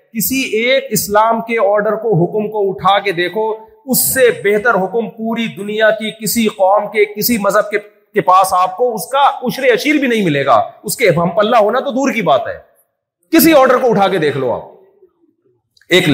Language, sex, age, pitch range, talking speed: Urdu, male, 40-59, 175-225 Hz, 200 wpm